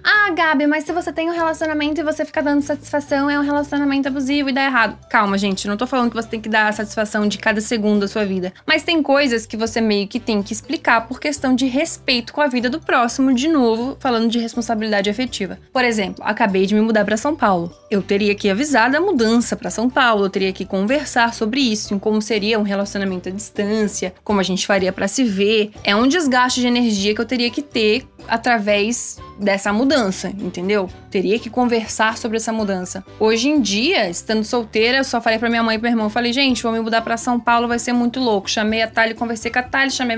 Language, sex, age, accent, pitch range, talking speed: Portuguese, female, 10-29, Brazilian, 215-285 Hz, 235 wpm